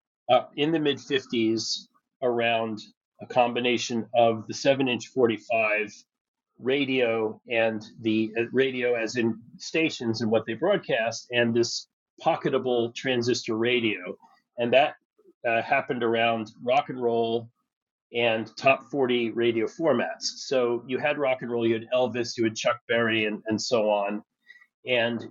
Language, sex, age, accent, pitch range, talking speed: English, male, 40-59, American, 110-130 Hz, 145 wpm